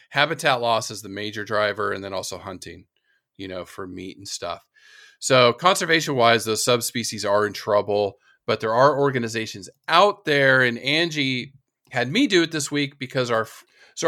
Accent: American